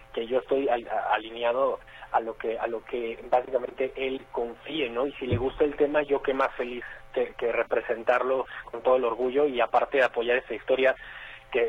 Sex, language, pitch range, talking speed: male, Spanish, 125-160 Hz, 195 wpm